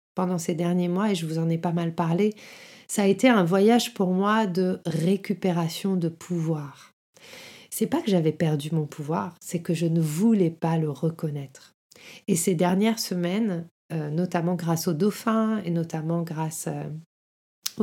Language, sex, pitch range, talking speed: French, female, 175-230 Hz, 170 wpm